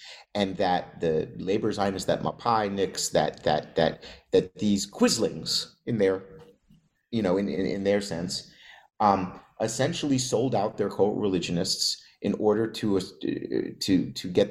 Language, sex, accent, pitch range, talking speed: English, male, American, 95-130 Hz, 150 wpm